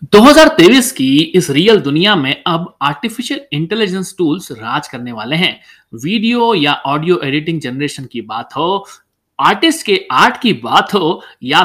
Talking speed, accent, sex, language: 150 wpm, native, male, Hindi